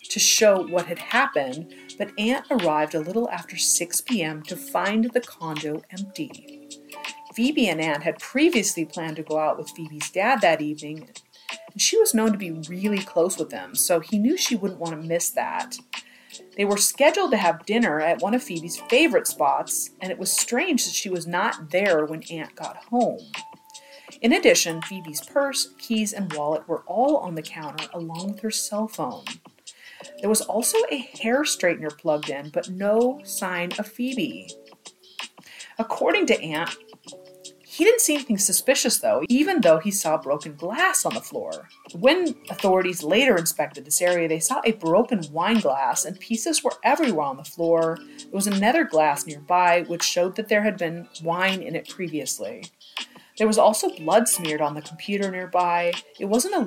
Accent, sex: American, female